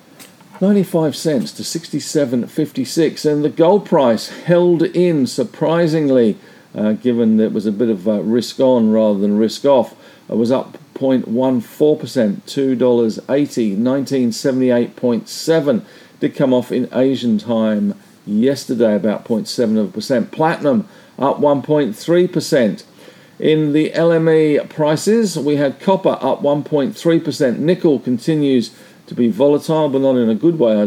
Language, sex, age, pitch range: English, male, 50-69, 125-165 Hz